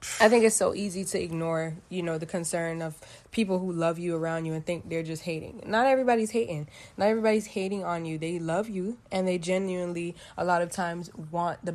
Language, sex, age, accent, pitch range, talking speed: English, female, 20-39, American, 165-195 Hz, 220 wpm